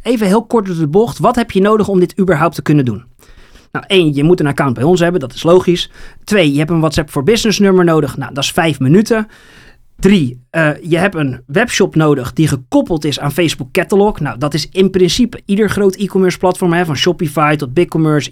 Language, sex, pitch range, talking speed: Dutch, male, 150-200 Hz, 220 wpm